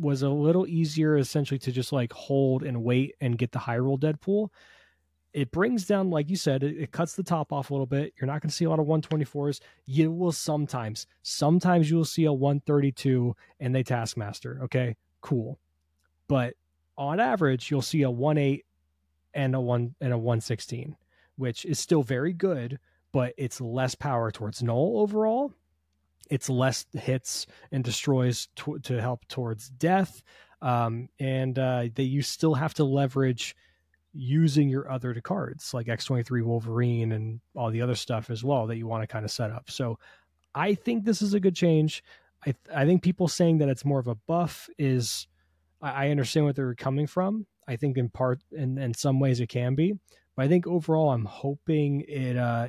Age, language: 20-39, English